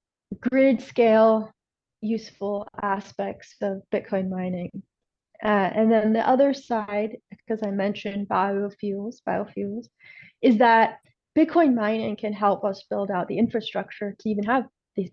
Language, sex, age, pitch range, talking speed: English, female, 30-49, 200-245 Hz, 130 wpm